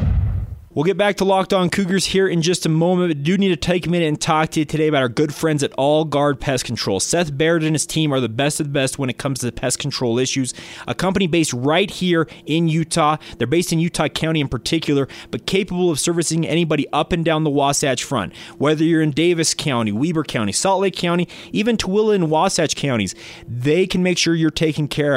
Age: 30-49